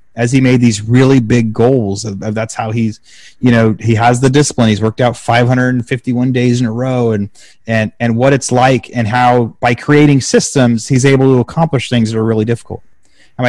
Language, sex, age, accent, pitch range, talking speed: English, male, 30-49, American, 120-145 Hz, 195 wpm